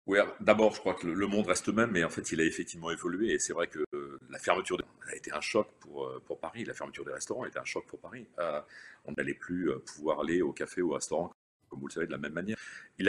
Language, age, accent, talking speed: French, 40-59, French, 275 wpm